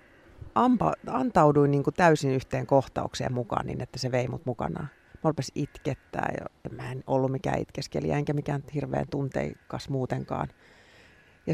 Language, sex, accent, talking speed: English, female, Finnish, 145 wpm